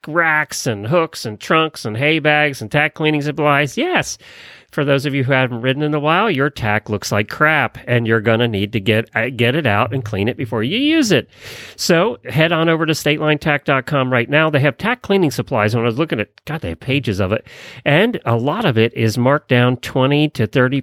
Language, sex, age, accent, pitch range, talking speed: English, male, 40-59, American, 110-150 Hz, 230 wpm